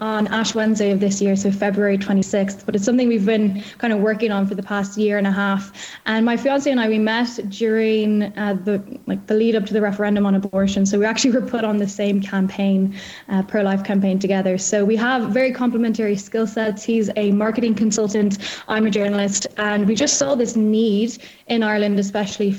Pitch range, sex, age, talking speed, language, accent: 200-225 Hz, female, 10-29, 215 wpm, English, Irish